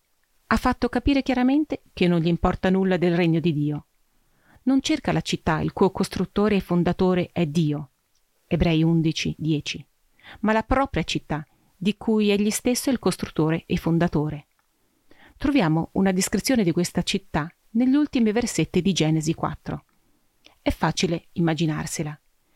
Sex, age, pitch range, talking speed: female, 40-59, 165-225 Hz, 145 wpm